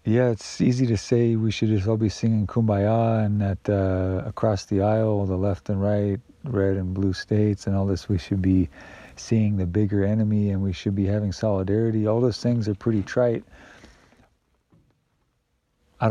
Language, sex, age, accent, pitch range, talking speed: English, male, 50-69, American, 95-115 Hz, 185 wpm